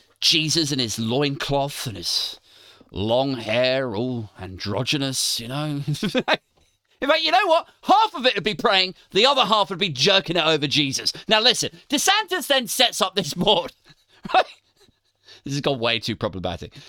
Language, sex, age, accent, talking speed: English, male, 30-49, British, 160 wpm